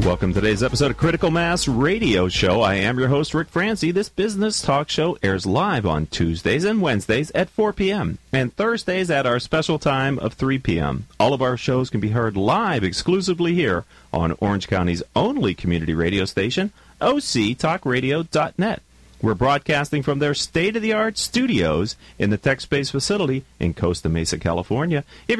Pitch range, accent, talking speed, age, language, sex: 105-175 Hz, American, 170 wpm, 40-59, English, male